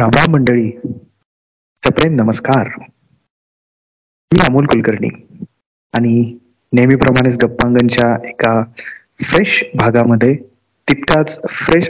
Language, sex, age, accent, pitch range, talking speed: Marathi, male, 30-49, native, 120-145 Hz, 65 wpm